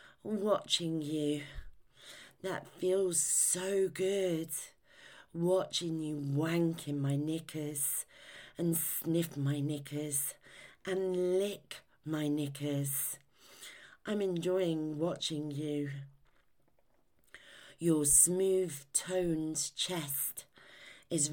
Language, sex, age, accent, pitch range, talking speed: English, female, 40-59, British, 150-185 Hz, 80 wpm